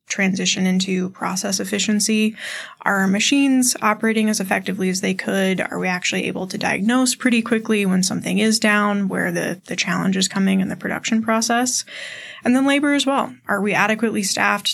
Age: 20-39